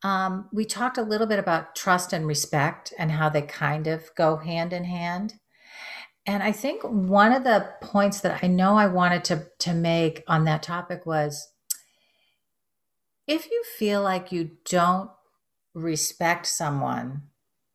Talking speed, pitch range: 155 wpm, 160-205 Hz